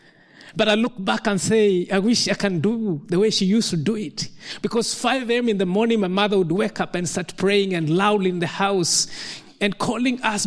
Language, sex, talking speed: English, male, 230 wpm